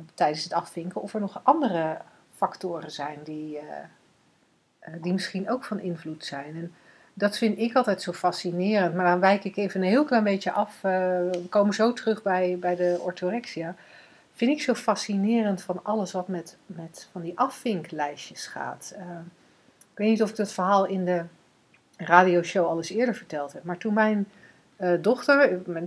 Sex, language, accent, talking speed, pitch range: female, Dutch, Dutch, 175 wpm, 175-220 Hz